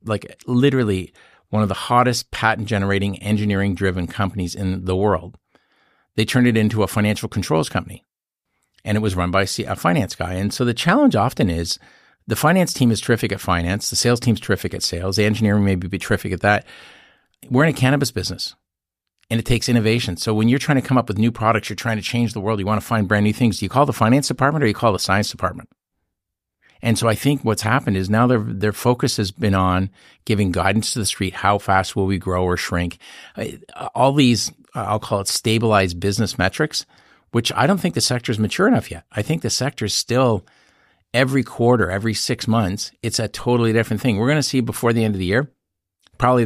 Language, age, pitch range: English, 50-69, 95-120 Hz